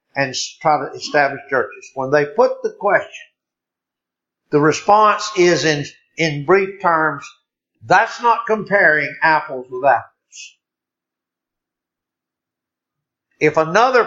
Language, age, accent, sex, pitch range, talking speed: English, 60-79, American, male, 155-235 Hz, 105 wpm